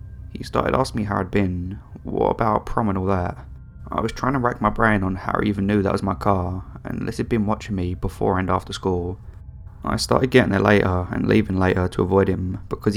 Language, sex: English, male